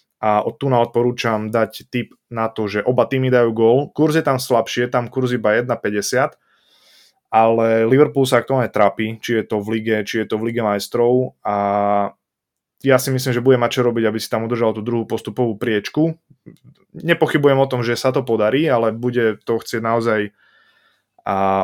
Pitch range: 110-130 Hz